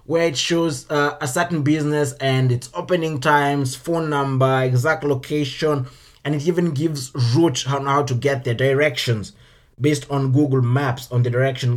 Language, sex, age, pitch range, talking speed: English, male, 20-39, 130-165 Hz, 170 wpm